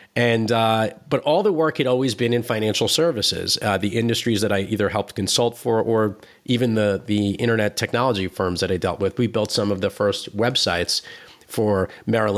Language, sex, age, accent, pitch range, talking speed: English, male, 30-49, American, 100-125 Hz, 200 wpm